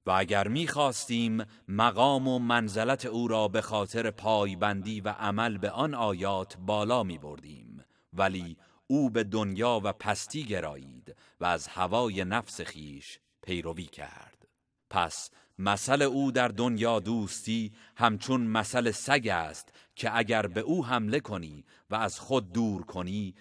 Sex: male